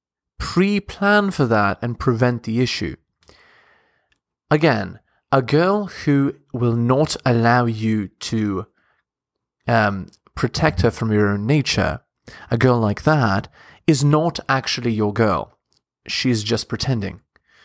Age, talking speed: 20-39, 120 wpm